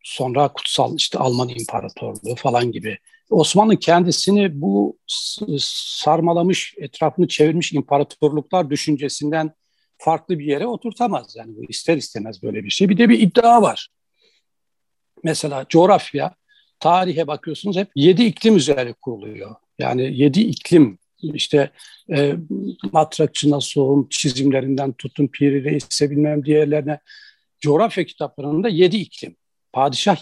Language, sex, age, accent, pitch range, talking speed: Turkish, male, 60-79, native, 145-190 Hz, 115 wpm